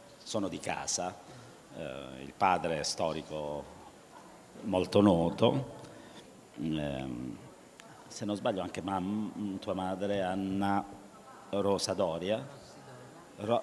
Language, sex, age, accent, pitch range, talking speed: Italian, male, 50-69, native, 85-100 Hz, 95 wpm